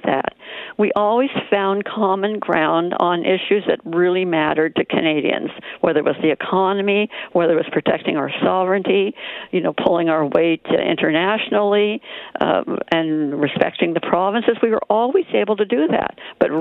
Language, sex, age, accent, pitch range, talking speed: English, female, 60-79, American, 155-215 Hz, 155 wpm